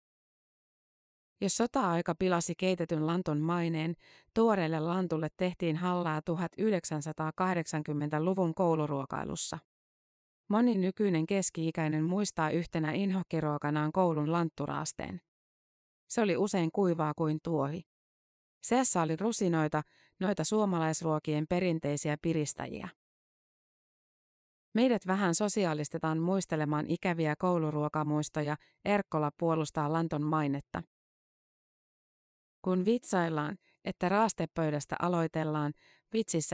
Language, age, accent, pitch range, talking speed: Finnish, 30-49, native, 155-185 Hz, 80 wpm